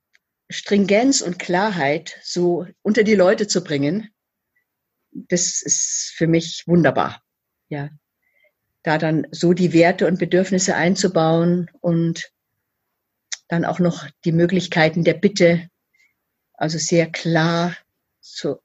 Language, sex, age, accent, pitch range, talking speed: German, female, 50-69, German, 155-185 Hz, 115 wpm